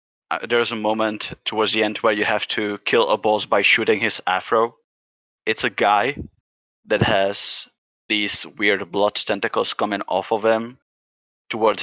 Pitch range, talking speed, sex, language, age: 95-110 Hz, 155 wpm, male, English, 20-39